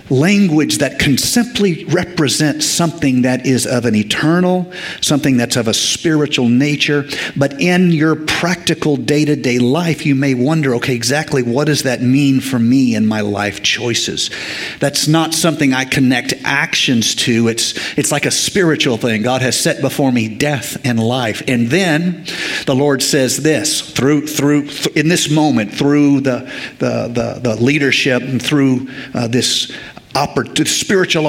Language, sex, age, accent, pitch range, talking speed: English, male, 50-69, American, 125-155 Hz, 160 wpm